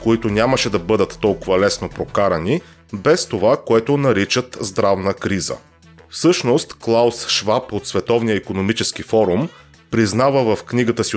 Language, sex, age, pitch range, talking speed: Bulgarian, male, 30-49, 100-130 Hz, 130 wpm